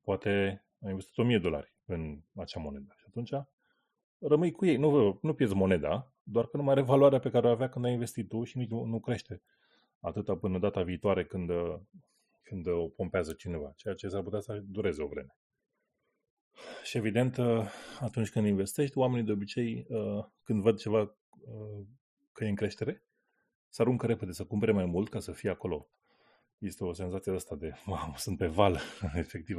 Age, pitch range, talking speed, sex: 30-49, 95-125 Hz, 175 wpm, male